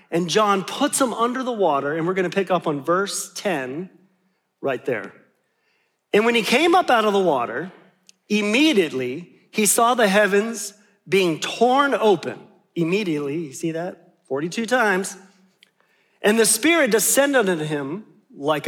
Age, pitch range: 40-59, 180-235 Hz